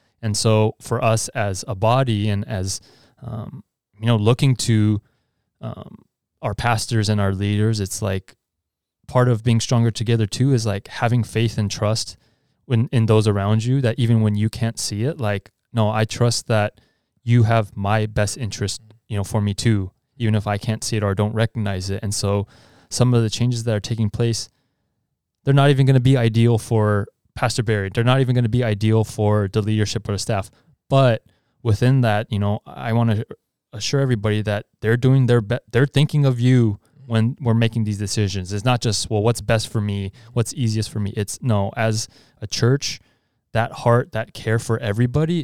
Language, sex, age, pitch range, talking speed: English, male, 20-39, 105-120 Hz, 200 wpm